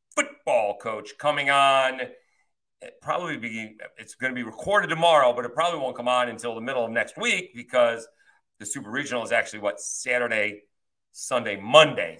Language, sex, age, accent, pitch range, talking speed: English, male, 40-59, American, 115-160 Hz, 165 wpm